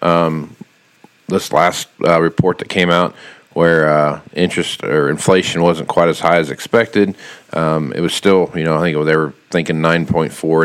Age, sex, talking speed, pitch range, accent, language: 40-59, male, 175 wpm, 80-90 Hz, American, English